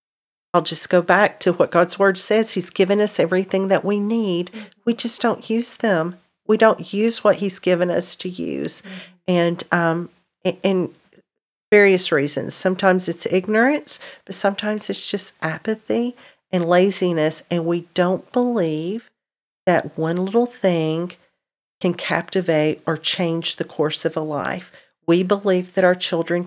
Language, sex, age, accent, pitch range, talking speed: English, female, 40-59, American, 170-195 Hz, 150 wpm